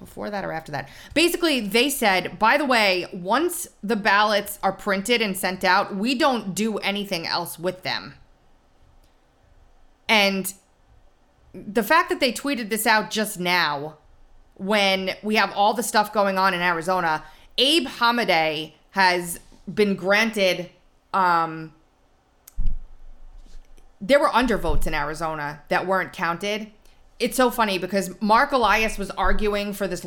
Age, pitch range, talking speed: 30-49, 180-235 Hz, 140 wpm